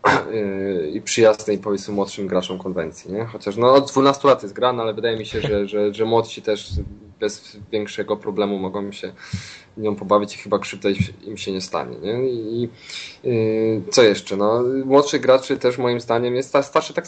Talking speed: 180 wpm